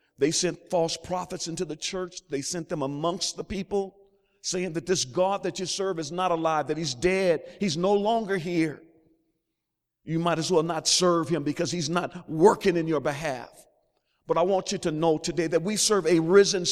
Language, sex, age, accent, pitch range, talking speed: English, male, 50-69, American, 150-185 Hz, 200 wpm